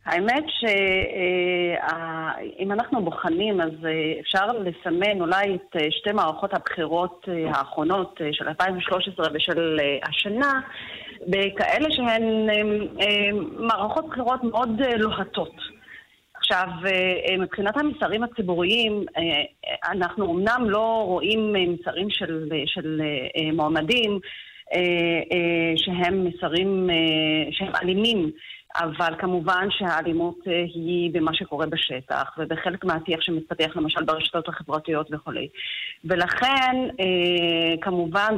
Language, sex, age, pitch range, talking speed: Hebrew, female, 30-49, 160-200 Hz, 85 wpm